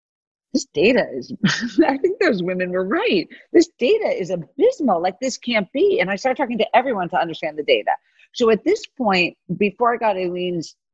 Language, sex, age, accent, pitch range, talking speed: English, female, 40-59, American, 180-255 Hz, 190 wpm